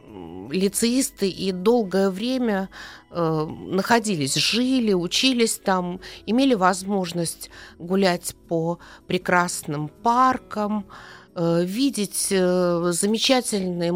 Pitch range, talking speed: 170-230 Hz, 80 wpm